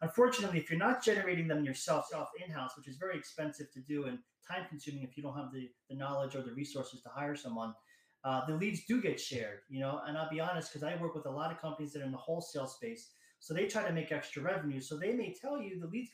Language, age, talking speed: English, 30-49, 260 wpm